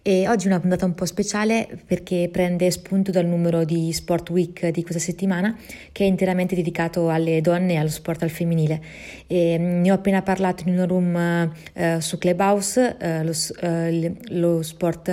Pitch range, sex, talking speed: 170-190 Hz, female, 185 wpm